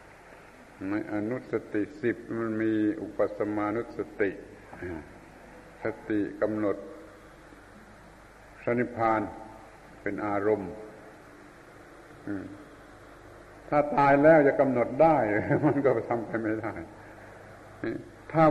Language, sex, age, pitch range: Thai, male, 70-89, 105-125 Hz